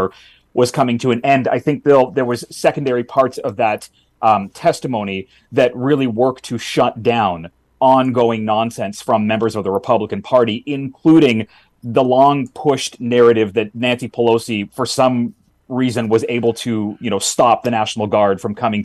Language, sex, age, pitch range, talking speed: English, male, 30-49, 110-130 Hz, 165 wpm